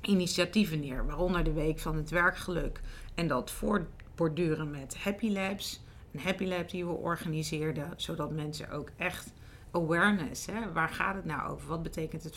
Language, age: Dutch, 40-59